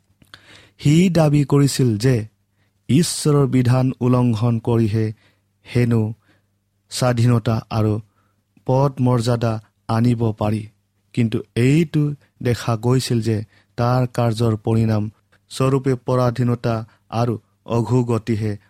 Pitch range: 105-130 Hz